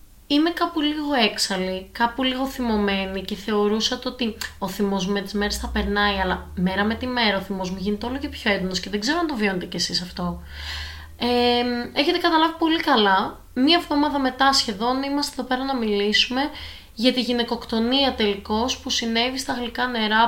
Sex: female